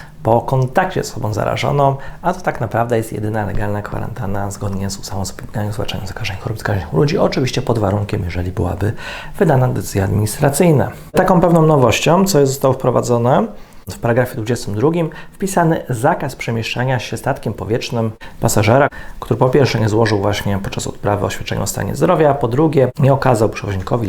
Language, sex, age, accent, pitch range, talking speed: Polish, male, 40-59, native, 105-135 Hz, 165 wpm